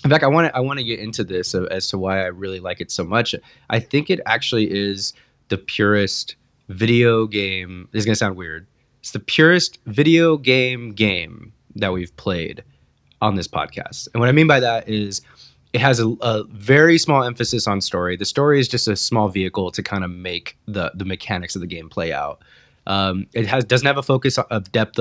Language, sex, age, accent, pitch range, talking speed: English, male, 20-39, American, 100-130 Hz, 215 wpm